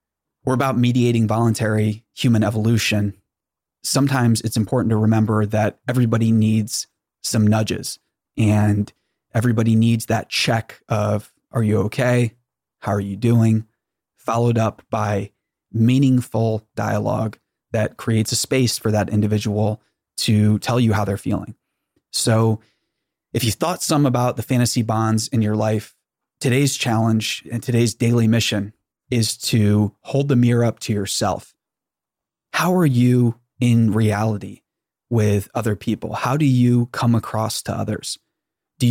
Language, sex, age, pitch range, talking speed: English, male, 20-39, 110-120 Hz, 135 wpm